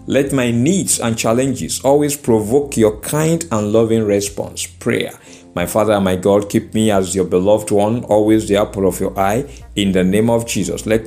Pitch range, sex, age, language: 95-125 Hz, male, 50-69, English